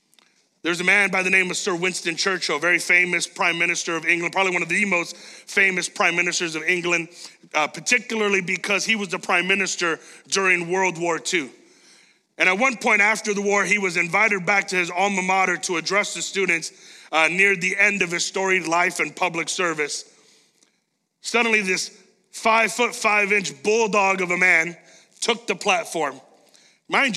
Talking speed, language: 185 wpm, English